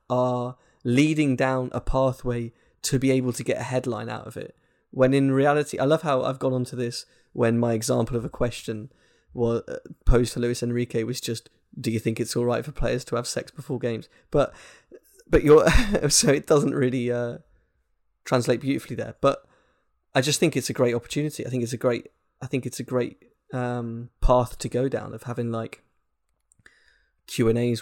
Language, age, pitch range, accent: English, 20-39, 115-130 Hz, British